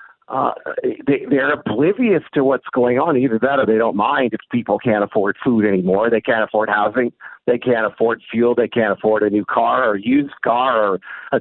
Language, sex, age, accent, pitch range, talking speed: English, male, 50-69, American, 115-145 Hz, 205 wpm